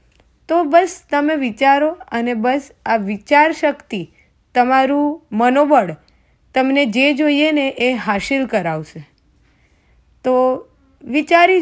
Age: 20-39